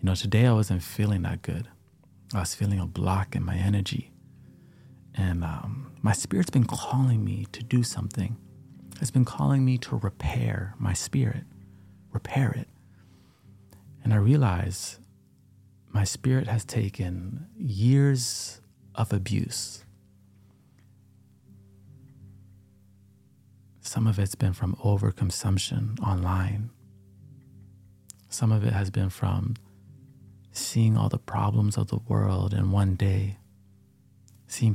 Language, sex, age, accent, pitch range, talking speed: English, male, 40-59, American, 100-125 Hz, 120 wpm